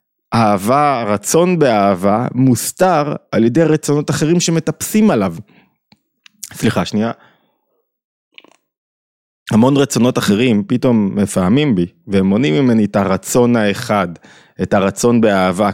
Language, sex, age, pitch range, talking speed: Hebrew, male, 20-39, 105-140 Hz, 105 wpm